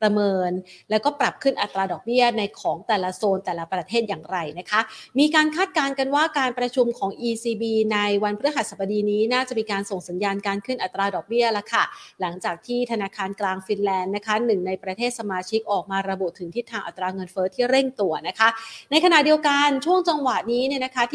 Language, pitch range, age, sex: Thai, 200-245 Hz, 30-49, female